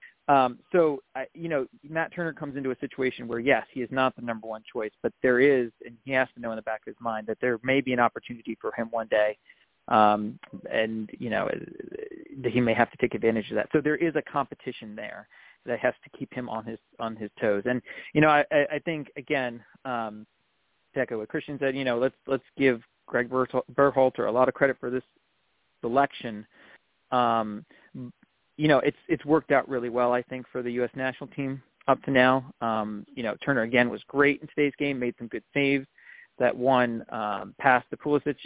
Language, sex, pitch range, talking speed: English, male, 120-140 Hz, 215 wpm